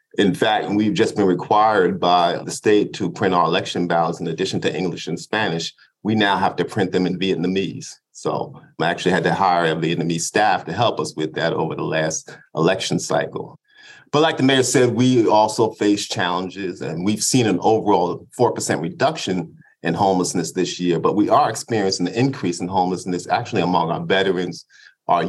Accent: American